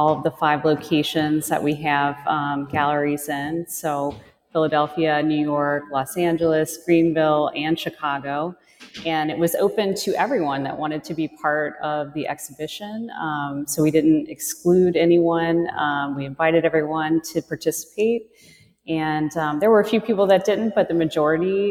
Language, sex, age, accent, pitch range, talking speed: English, female, 30-49, American, 150-185 Hz, 160 wpm